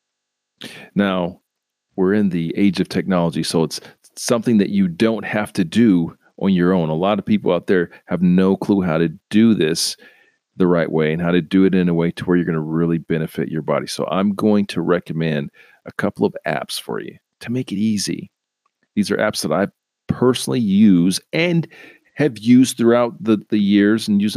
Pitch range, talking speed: 90-110 Hz, 205 wpm